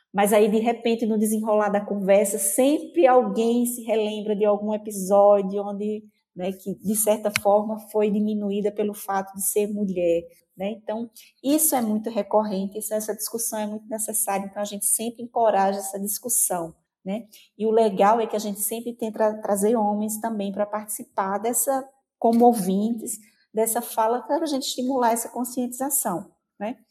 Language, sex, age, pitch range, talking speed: Portuguese, female, 20-39, 200-235 Hz, 165 wpm